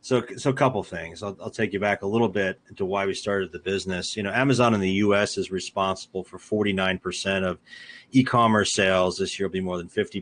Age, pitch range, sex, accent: 30-49, 100-125 Hz, male, American